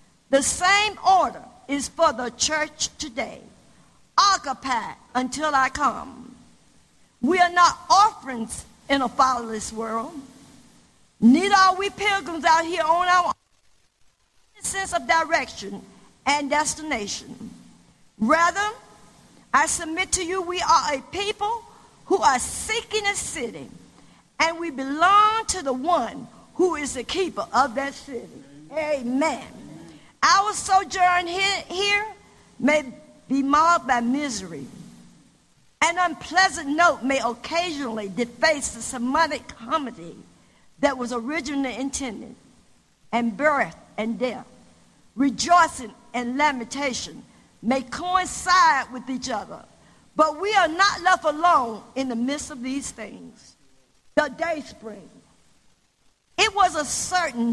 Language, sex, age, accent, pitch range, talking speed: English, female, 50-69, American, 255-360 Hz, 120 wpm